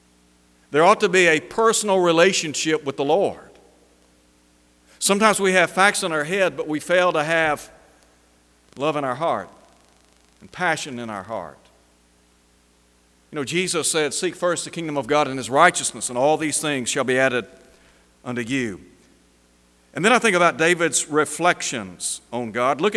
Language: English